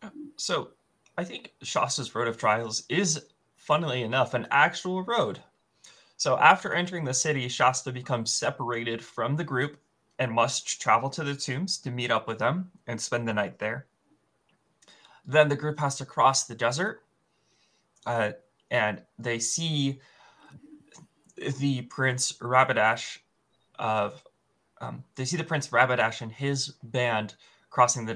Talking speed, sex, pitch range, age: 145 wpm, male, 115-140 Hz, 20-39